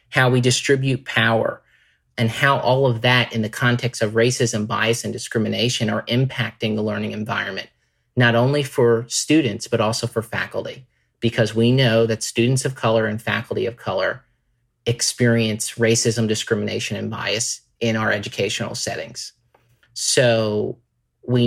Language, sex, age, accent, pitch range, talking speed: English, male, 40-59, American, 110-125 Hz, 145 wpm